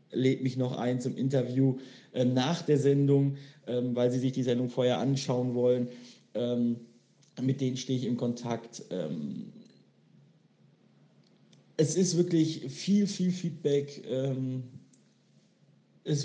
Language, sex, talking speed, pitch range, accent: German, male, 130 wpm, 120-140 Hz, German